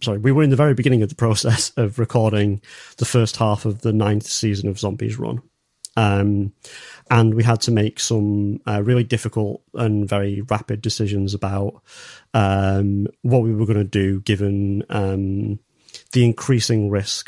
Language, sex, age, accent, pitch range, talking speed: English, male, 30-49, British, 105-120 Hz, 170 wpm